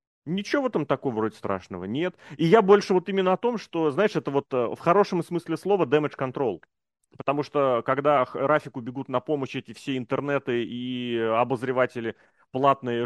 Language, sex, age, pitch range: Russian, male, 30-49, 115-150 Hz